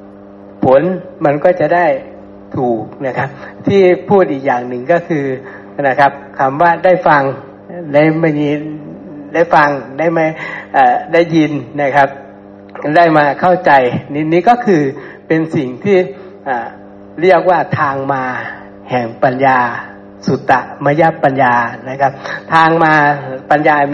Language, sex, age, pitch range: Thai, male, 60-79, 125-160 Hz